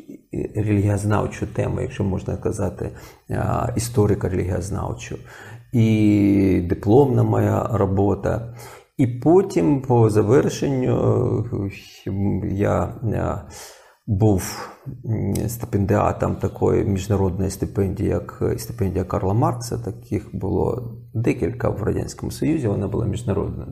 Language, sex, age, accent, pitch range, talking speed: Ukrainian, male, 40-59, native, 100-125 Hz, 85 wpm